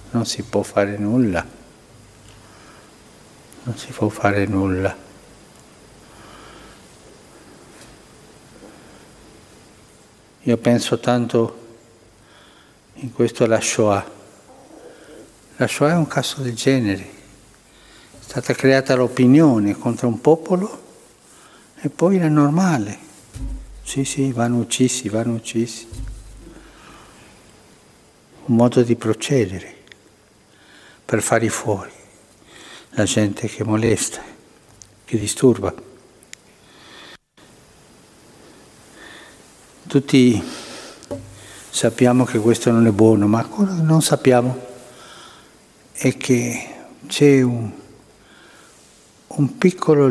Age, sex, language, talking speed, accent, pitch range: 60-79, male, Italian, 85 wpm, native, 105-130 Hz